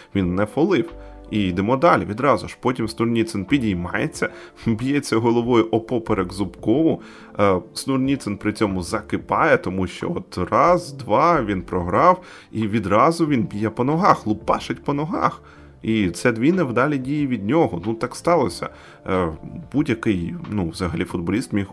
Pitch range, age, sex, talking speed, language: 95-115 Hz, 30-49, male, 140 wpm, Ukrainian